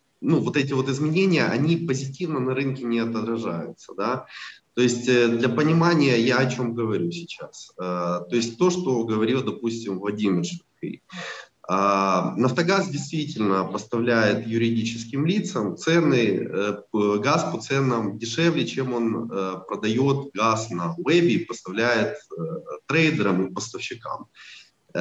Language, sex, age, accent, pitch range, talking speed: Ukrainian, male, 20-39, native, 110-165 Hz, 120 wpm